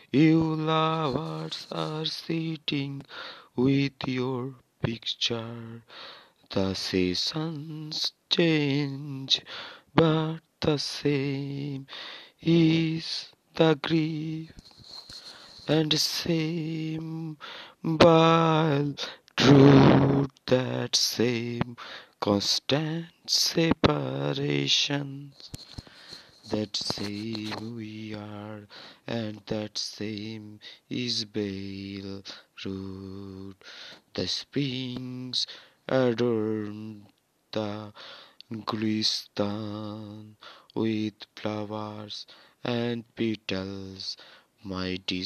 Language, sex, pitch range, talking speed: Bengali, male, 105-140 Hz, 60 wpm